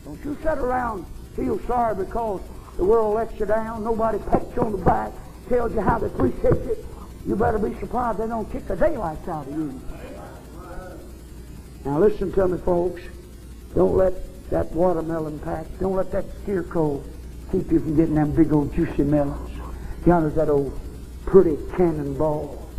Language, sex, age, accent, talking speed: English, male, 60-79, American, 170 wpm